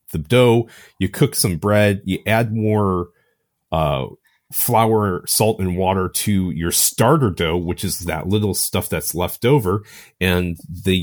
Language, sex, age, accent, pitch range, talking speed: English, male, 30-49, American, 90-115 Hz, 150 wpm